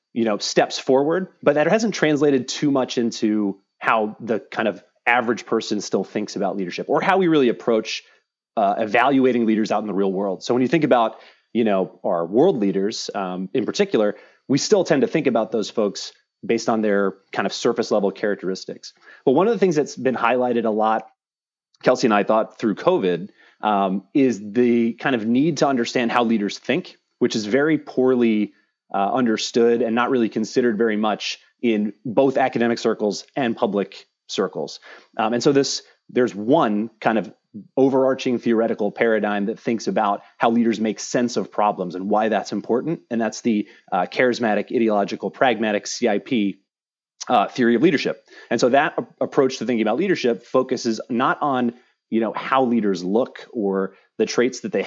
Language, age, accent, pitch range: English, 30-49, American, 105-130 Hz